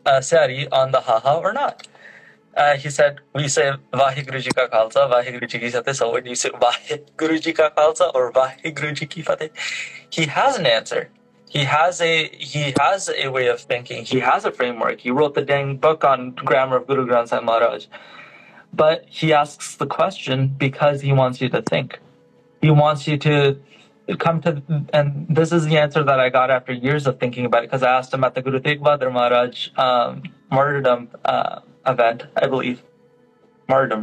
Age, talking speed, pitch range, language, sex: 20-39, 185 wpm, 130-155 Hz, English, male